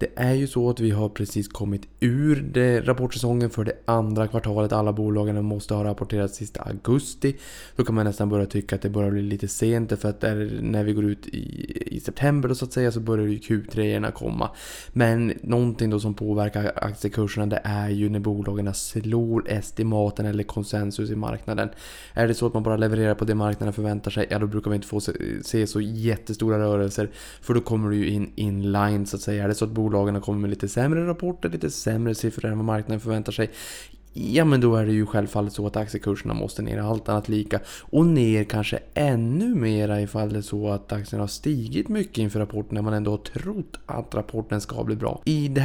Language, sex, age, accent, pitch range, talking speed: Swedish, male, 20-39, Norwegian, 105-115 Hz, 215 wpm